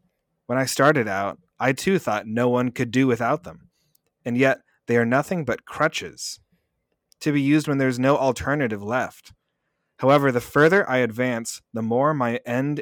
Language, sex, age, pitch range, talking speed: English, male, 30-49, 115-140 Hz, 175 wpm